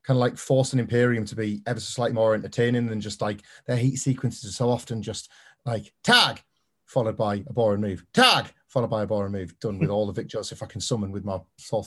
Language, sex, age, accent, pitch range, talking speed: English, male, 30-49, British, 115-135 Hz, 240 wpm